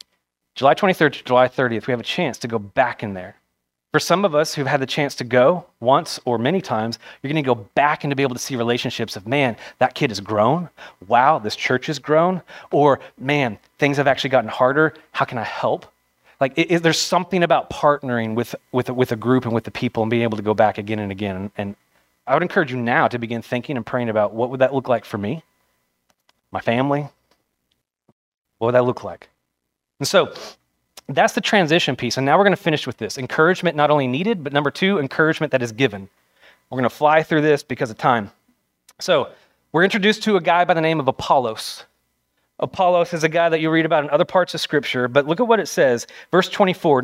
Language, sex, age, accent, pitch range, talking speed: English, male, 30-49, American, 120-165 Hz, 225 wpm